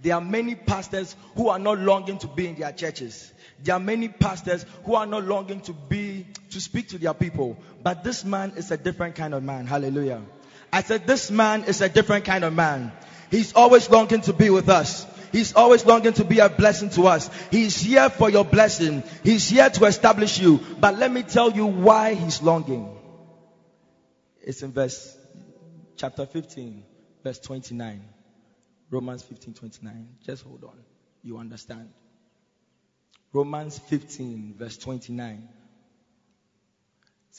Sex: male